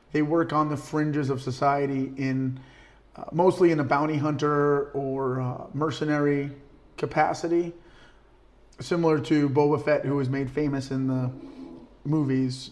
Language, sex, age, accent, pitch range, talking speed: English, male, 30-49, American, 135-155 Hz, 135 wpm